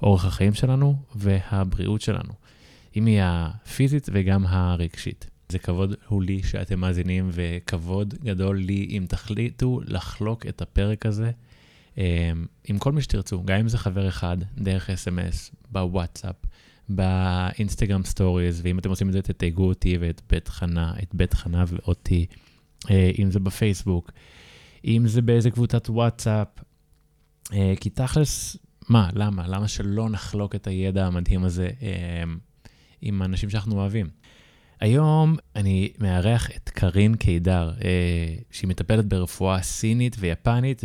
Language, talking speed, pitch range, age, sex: Hebrew, 125 wpm, 90-110 Hz, 20-39, male